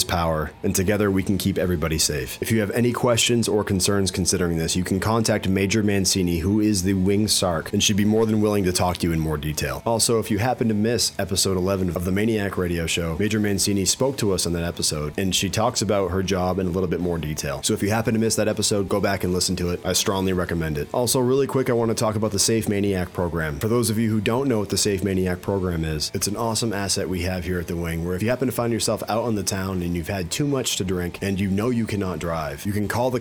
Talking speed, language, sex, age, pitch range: 280 wpm, English, male, 30-49, 90-110 Hz